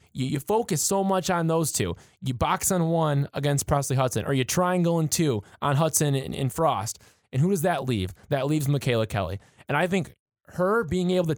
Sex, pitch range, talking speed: male, 125-165 Hz, 210 wpm